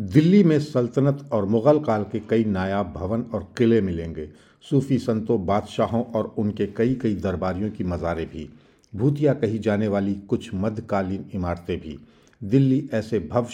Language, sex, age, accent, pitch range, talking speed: Hindi, male, 50-69, native, 95-115 Hz, 155 wpm